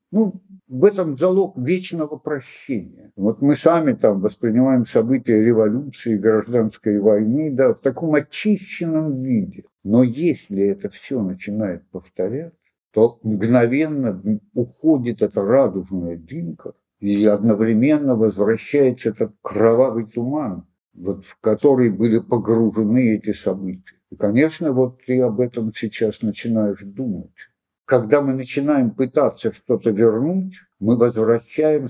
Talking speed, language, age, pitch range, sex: 115 wpm, Russian, 60-79, 110-140 Hz, male